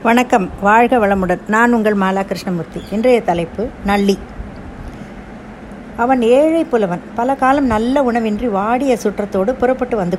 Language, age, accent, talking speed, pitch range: Tamil, 60-79, native, 125 wpm, 190-245 Hz